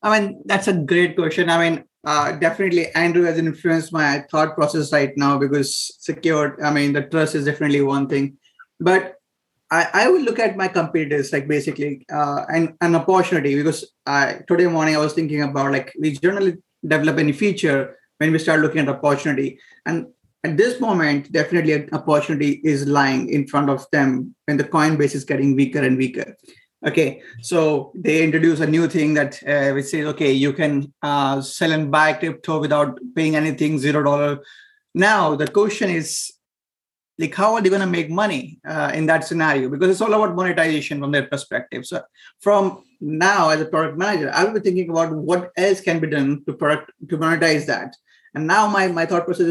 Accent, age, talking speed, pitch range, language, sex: Indian, 20-39, 190 wpm, 145-175 Hz, English, male